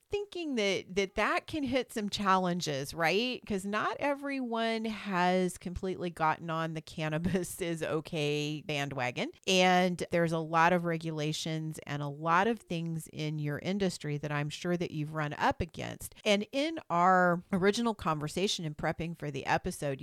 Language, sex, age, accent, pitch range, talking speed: English, female, 40-59, American, 150-195 Hz, 160 wpm